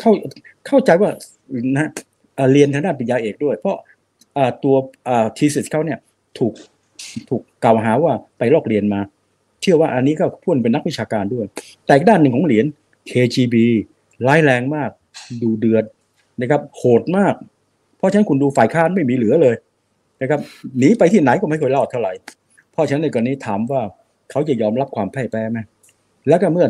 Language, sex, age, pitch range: Thai, male, 60-79, 110-140 Hz